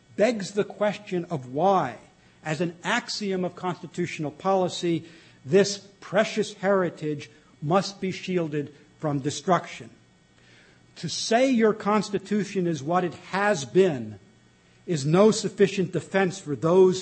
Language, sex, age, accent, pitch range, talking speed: English, male, 60-79, American, 145-190 Hz, 120 wpm